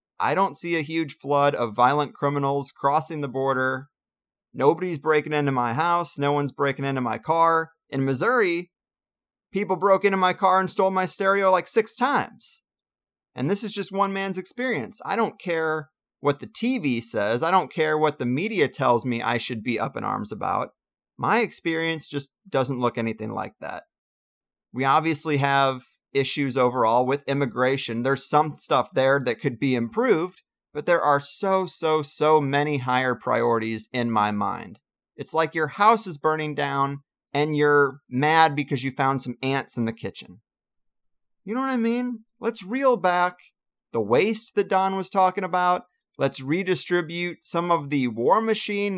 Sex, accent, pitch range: male, American, 135-190 Hz